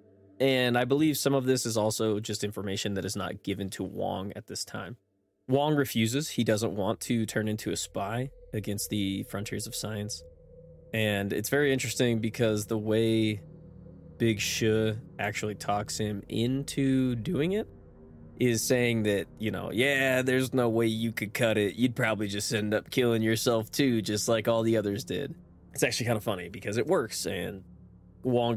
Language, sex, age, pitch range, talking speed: English, male, 20-39, 100-125 Hz, 180 wpm